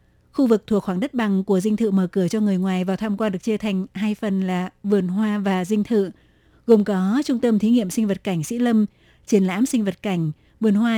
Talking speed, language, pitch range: 250 wpm, Vietnamese, 195-225 Hz